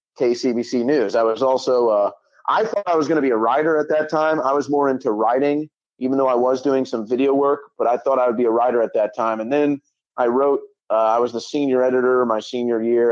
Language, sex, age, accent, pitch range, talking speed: English, male, 30-49, American, 115-140 Hz, 250 wpm